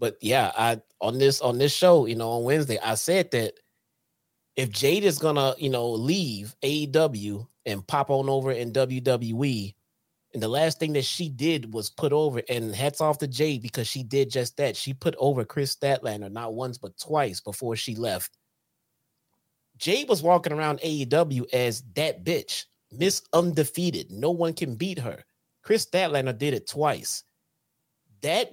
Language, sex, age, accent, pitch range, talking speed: English, male, 30-49, American, 120-155 Hz, 175 wpm